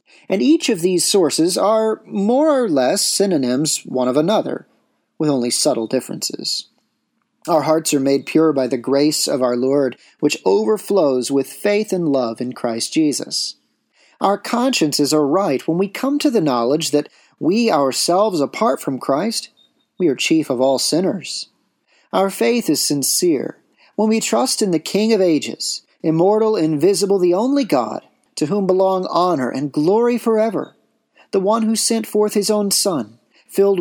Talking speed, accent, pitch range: 165 wpm, American, 145-220 Hz